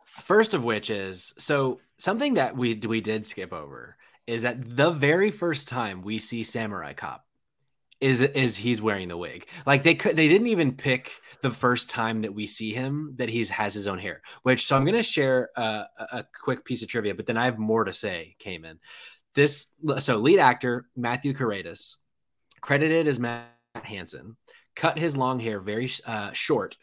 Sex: male